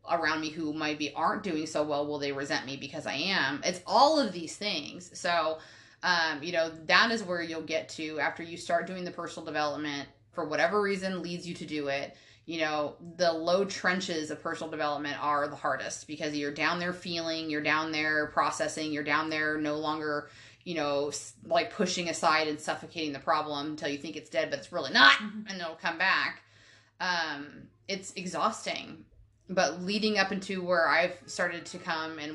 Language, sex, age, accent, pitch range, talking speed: English, female, 30-49, American, 145-175 Hz, 195 wpm